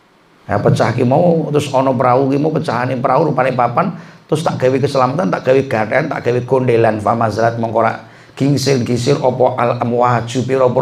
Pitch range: 115-155 Hz